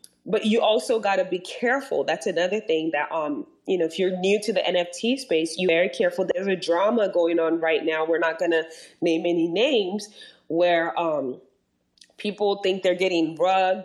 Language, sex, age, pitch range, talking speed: English, female, 20-39, 165-210 Hz, 200 wpm